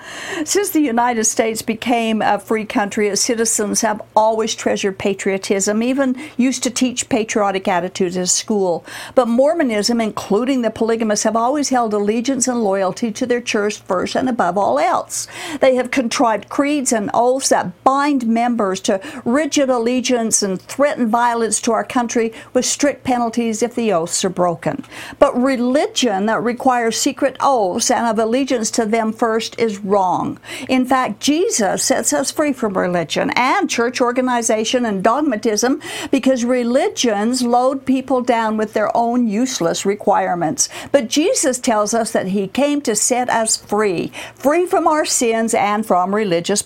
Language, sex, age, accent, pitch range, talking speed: English, female, 60-79, American, 215-260 Hz, 160 wpm